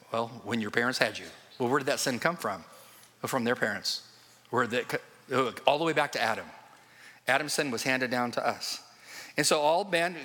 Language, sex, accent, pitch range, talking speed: English, male, American, 115-150 Hz, 195 wpm